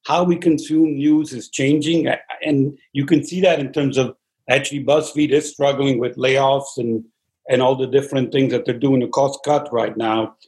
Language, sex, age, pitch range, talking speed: English, male, 50-69, 135-155 Hz, 195 wpm